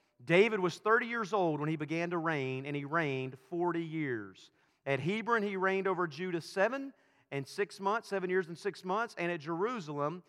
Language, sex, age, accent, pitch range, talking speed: English, male, 40-59, American, 170-225 Hz, 190 wpm